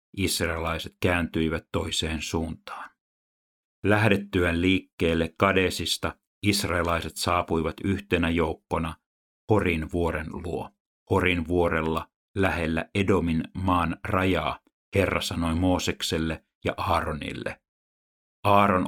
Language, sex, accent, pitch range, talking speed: Finnish, male, native, 80-95 Hz, 85 wpm